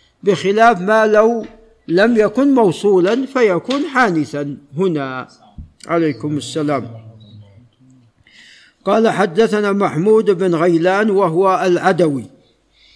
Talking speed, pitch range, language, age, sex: 85 wpm, 150-195 Hz, Arabic, 60-79, male